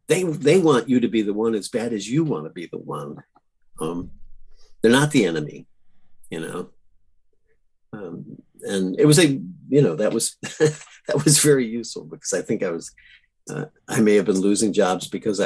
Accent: American